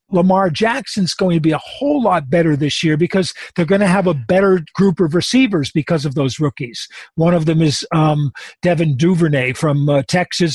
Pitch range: 155-185 Hz